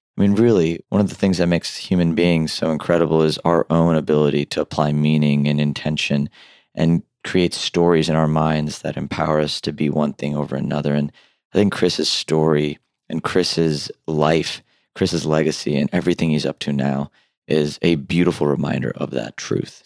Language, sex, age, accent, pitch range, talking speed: English, male, 30-49, American, 75-85 Hz, 180 wpm